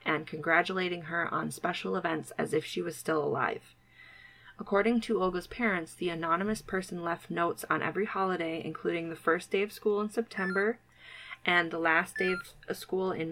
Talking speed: 175 wpm